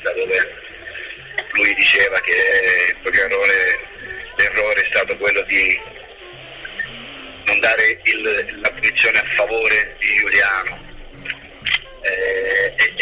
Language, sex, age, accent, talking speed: Italian, male, 40-59, native, 90 wpm